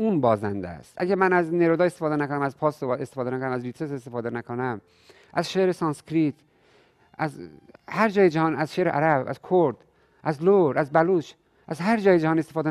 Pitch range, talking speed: 110-160 Hz, 180 wpm